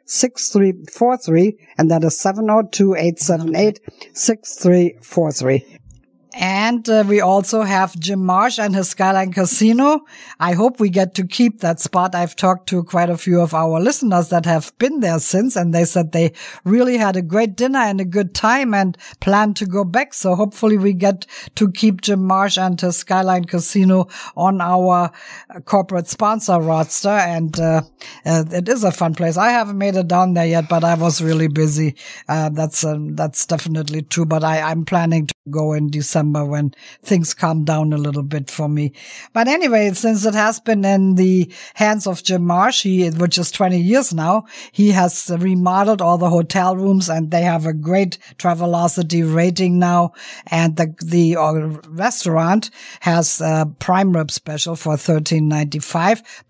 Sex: female